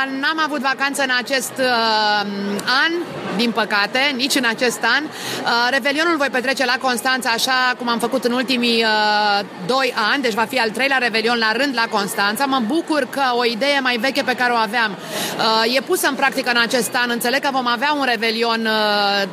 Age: 30-49